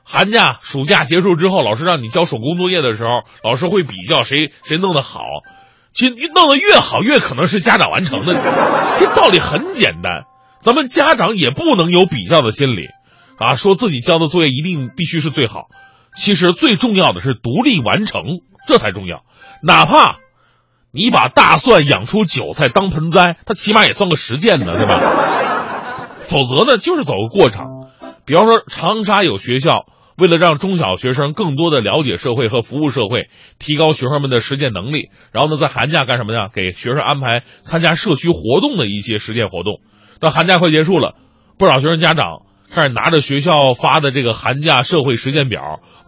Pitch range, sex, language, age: 130-185 Hz, male, Chinese, 30-49